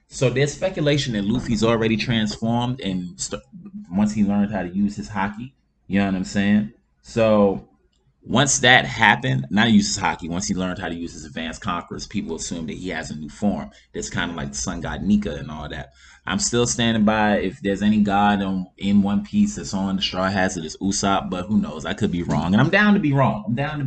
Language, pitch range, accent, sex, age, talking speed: English, 95-120 Hz, American, male, 20-39, 235 wpm